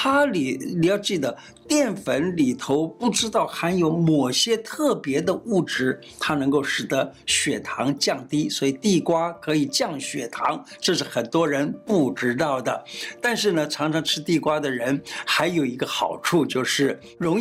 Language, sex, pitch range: Chinese, male, 145-200 Hz